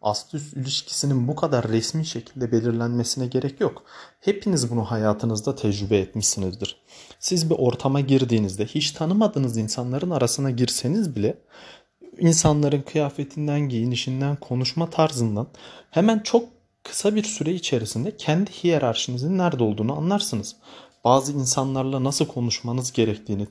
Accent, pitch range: native, 115-165 Hz